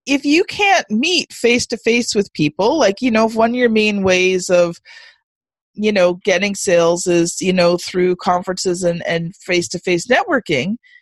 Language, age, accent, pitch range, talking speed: English, 40-59, American, 210-275 Hz, 180 wpm